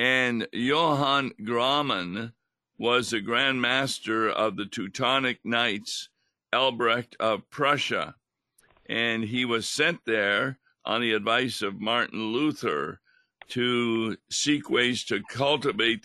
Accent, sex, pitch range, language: American, male, 110-130 Hz, English